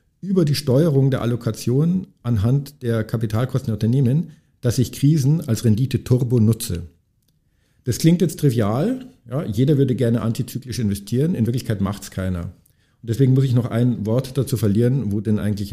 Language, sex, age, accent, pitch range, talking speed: German, male, 50-69, German, 105-130 Hz, 160 wpm